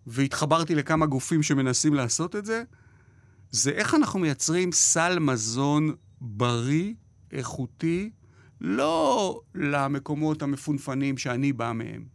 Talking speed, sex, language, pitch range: 105 wpm, male, Hebrew, 125-180 Hz